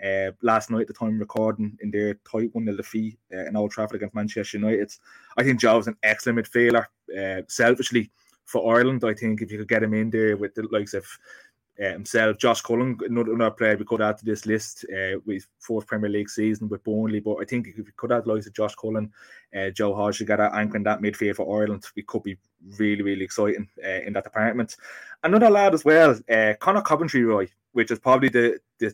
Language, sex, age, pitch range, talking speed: English, male, 20-39, 105-120 Hz, 230 wpm